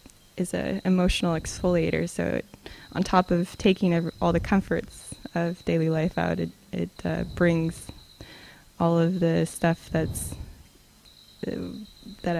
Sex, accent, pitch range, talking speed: female, American, 160-180 Hz, 140 wpm